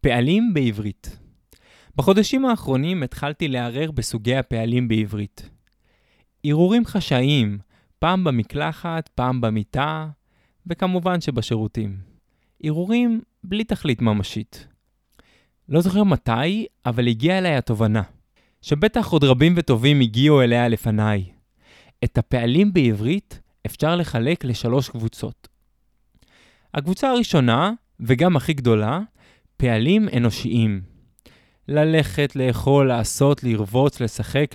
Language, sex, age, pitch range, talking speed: Hebrew, male, 20-39, 115-170 Hz, 95 wpm